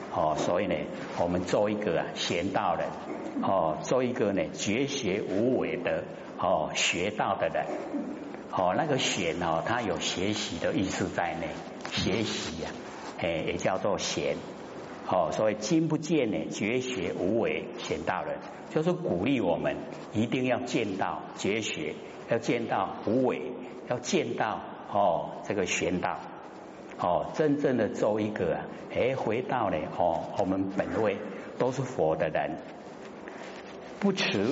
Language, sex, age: Chinese, male, 60-79